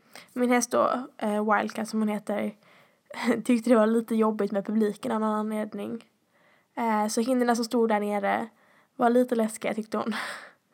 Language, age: Swedish, 10-29